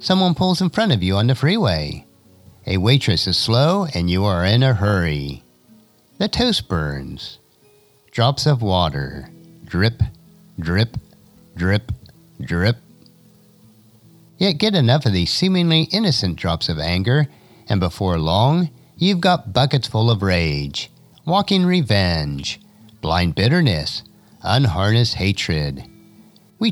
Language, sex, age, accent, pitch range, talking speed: English, male, 50-69, American, 90-150 Hz, 125 wpm